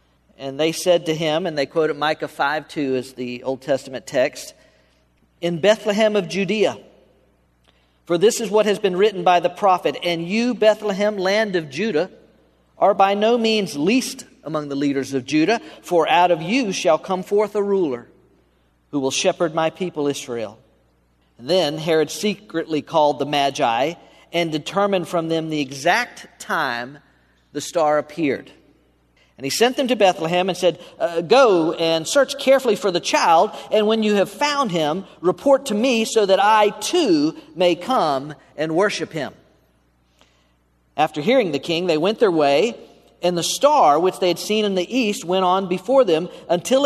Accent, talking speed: American, 175 wpm